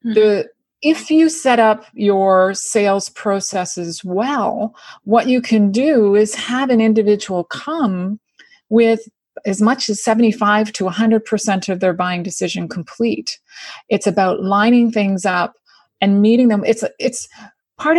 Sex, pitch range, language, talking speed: female, 195-235 Hz, English, 145 wpm